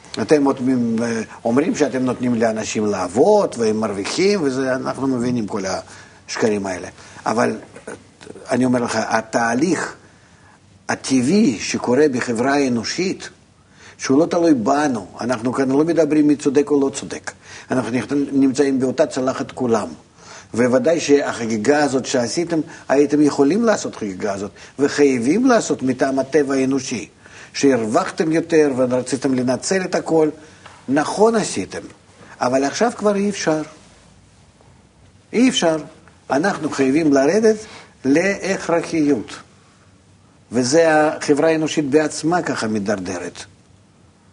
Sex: male